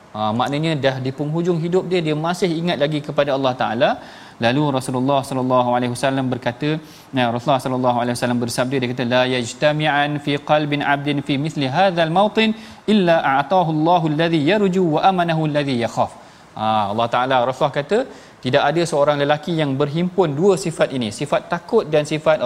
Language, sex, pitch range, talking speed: Malayalam, male, 130-170 Hz, 170 wpm